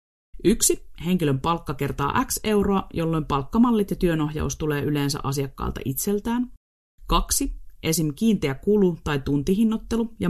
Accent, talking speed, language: native, 120 wpm, Finnish